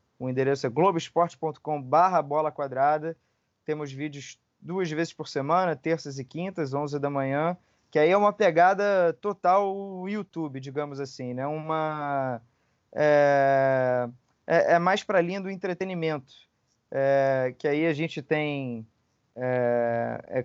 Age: 20-39